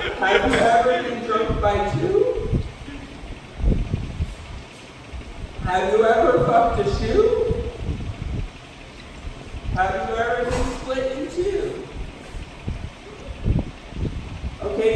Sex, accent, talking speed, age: male, American, 85 wpm, 50-69